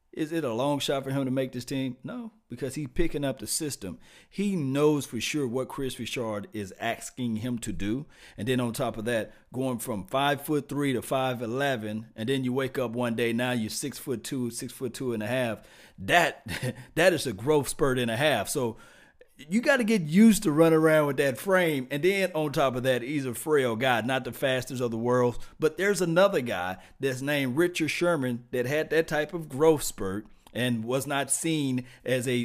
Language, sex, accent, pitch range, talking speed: English, male, American, 120-150 Hz, 220 wpm